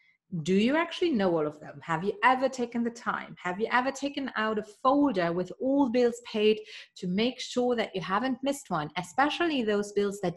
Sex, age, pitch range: female, 30-49, 185-255 Hz